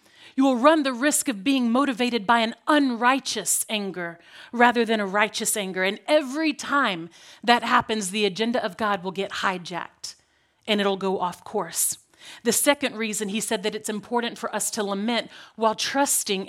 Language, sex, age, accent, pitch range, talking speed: English, female, 40-59, American, 205-245 Hz, 175 wpm